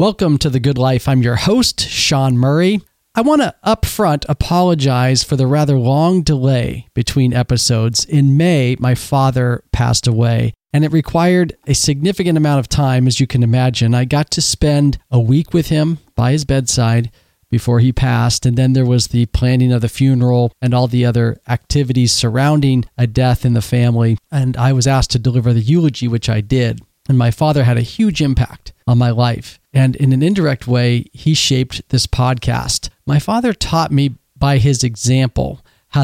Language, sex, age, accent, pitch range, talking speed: English, male, 40-59, American, 120-145 Hz, 185 wpm